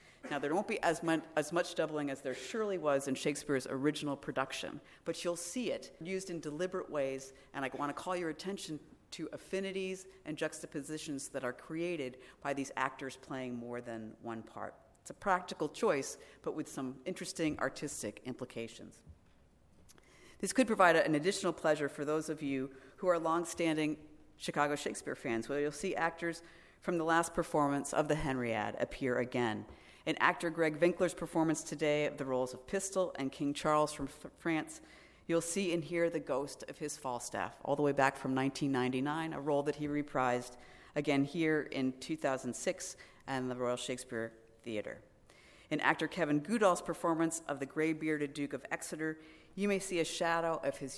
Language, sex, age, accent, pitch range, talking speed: English, female, 50-69, American, 135-165 Hz, 175 wpm